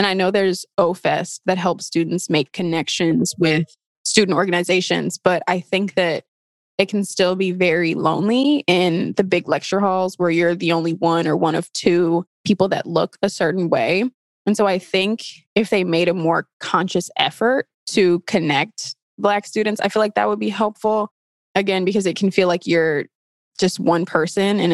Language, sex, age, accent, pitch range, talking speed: English, female, 20-39, American, 170-205 Hz, 185 wpm